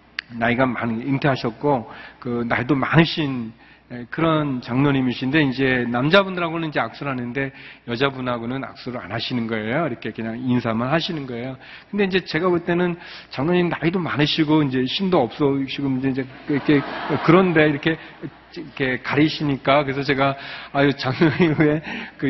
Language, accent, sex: Korean, native, male